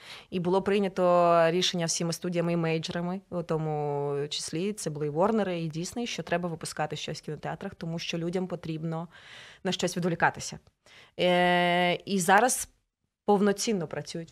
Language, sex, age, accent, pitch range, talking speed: Ukrainian, female, 20-39, native, 170-215 Hz, 145 wpm